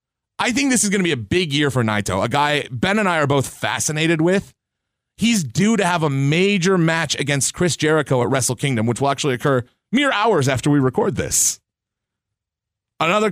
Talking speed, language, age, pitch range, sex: 205 wpm, English, 30-49, 125-190 Hz, male